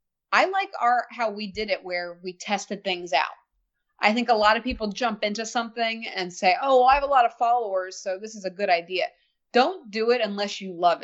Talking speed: 235 wpm